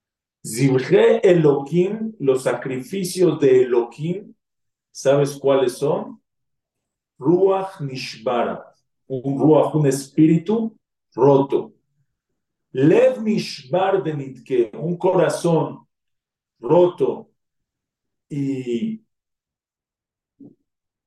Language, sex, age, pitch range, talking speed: Spanish, male, 50-69, 135-185 Hz, 65 wpm